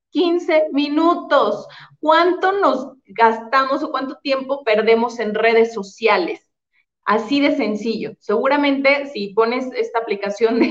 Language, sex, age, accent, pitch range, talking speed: Spanish, female, 30-49, Mexican, 215-280 Hz, 110 wpm